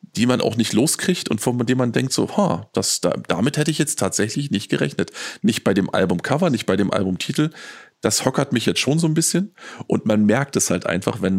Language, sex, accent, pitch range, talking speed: German, male, German, 95-115 Hz, 225 wpm